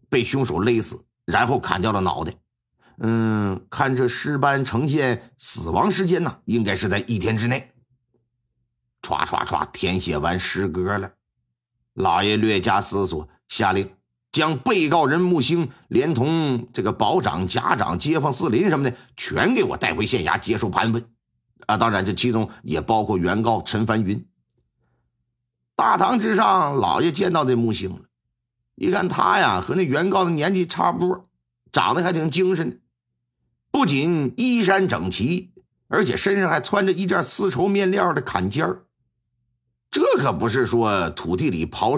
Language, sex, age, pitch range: Chinese, male, 50-69, 95-145 Hz